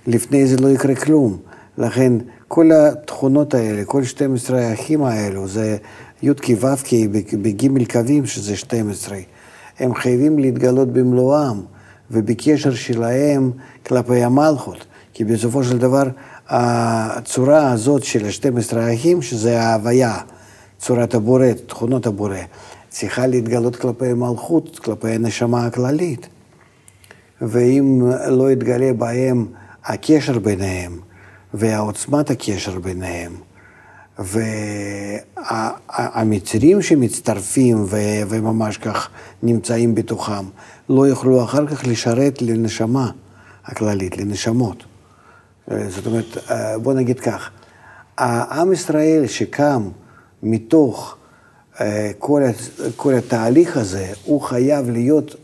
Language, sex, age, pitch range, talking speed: Hebrew, male, 50-69, 105-130 Hz, 100 wpm